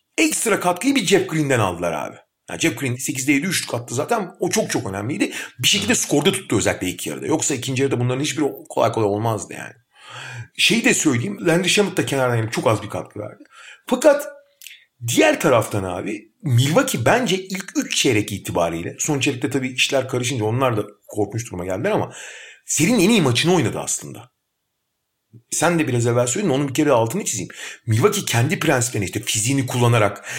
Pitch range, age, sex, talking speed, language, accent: 120-175 Hz, 40-59, male, 175 wpm, Turkish, native